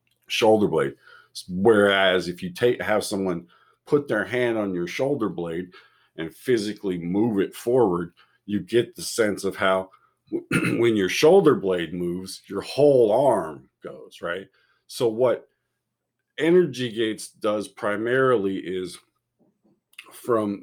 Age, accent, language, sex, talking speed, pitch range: 50-69, American, English, male, 130 wpm, 90-115 Hz